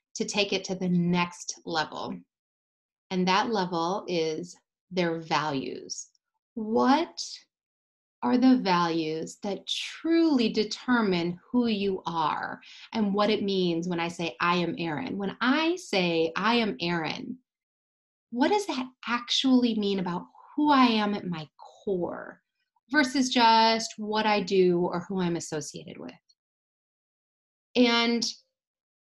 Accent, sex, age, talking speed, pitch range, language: American, female, 30-49, 130 wpm, 175-250 Hz, English